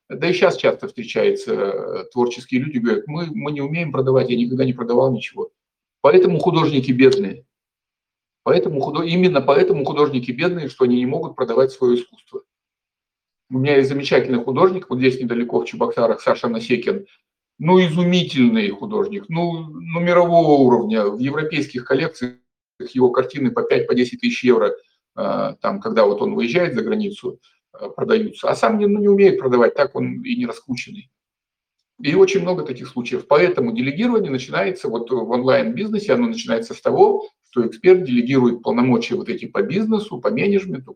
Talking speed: 155 wpm